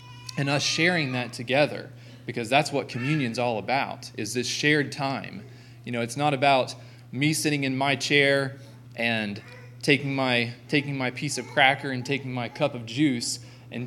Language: English